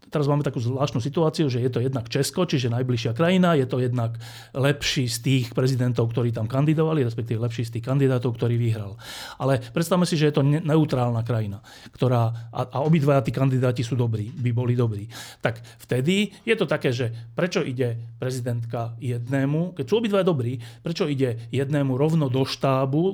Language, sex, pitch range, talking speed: Slovak, male, 120-145 Hz, 180 wpm